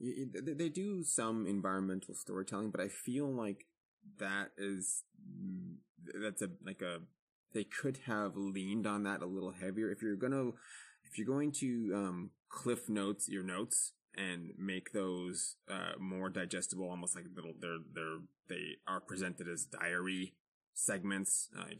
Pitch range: 90-120 Hz